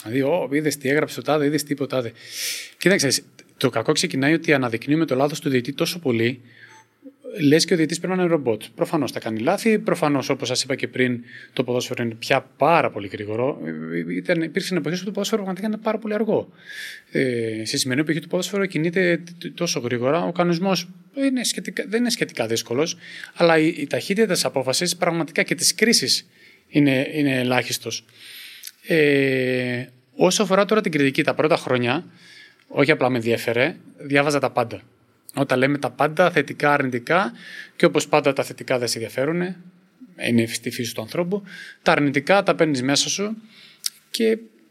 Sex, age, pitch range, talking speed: male, 30-49, 125-180 Hz, 170 wpm